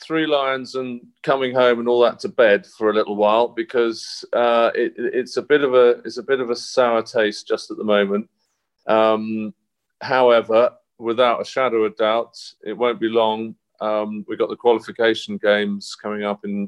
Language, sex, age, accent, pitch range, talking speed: English, male, 40-59, British, 100-130 Hz, 190 wpm